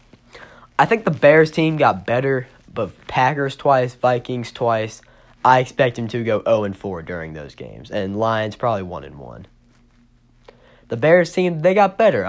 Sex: male